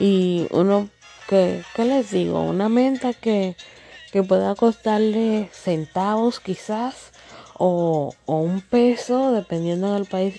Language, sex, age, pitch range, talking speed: Spanish, female, 20-39, 180-235 Hz, 115 wpm